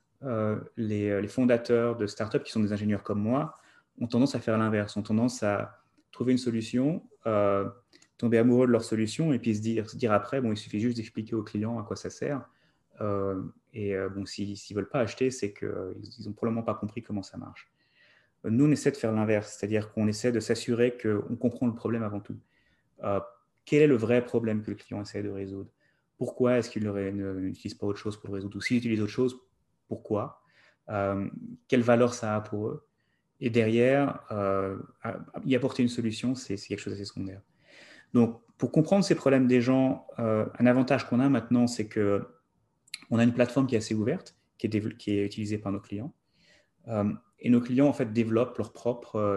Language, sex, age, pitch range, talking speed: French, male, 30-49, 100-120 Hz, 215 wpm